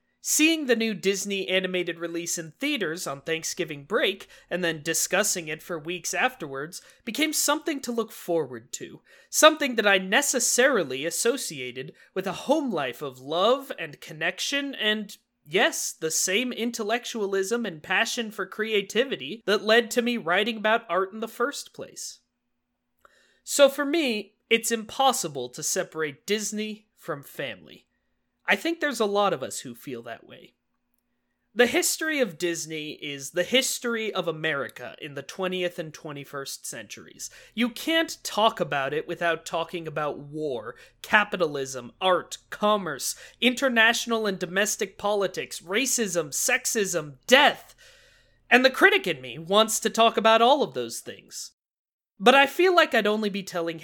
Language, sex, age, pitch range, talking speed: English, male, 30-49, 170-240 Hz, 150 wpm